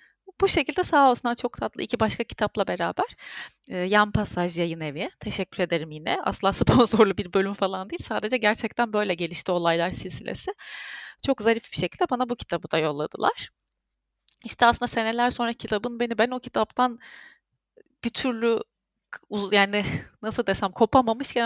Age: 30-49